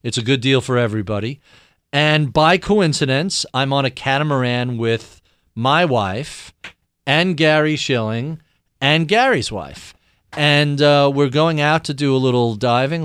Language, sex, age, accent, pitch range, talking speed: English, male, 40-59, American, 105-145 Hz, 145 wpm